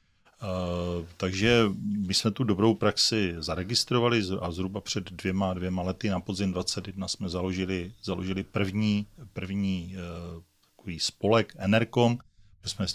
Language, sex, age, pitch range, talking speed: Czech, male, 40-59, 95-105 Hz, 130 wpm